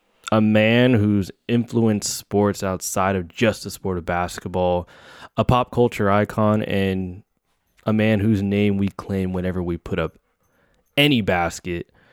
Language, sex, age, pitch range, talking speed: English, male, 20-39, 85-110 Hz, 145 wpm